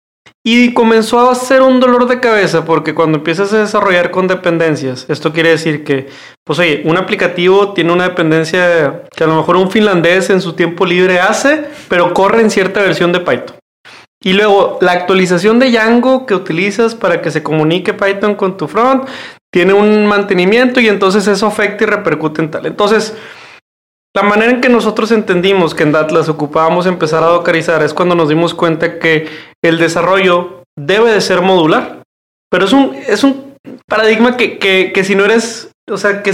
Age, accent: 30-49, Mexican